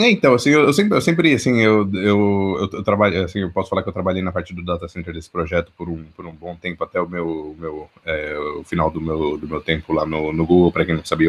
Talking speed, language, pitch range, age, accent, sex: 280 wpm, Portuguese, 85-100 Hz, 20-39, Brazilian, male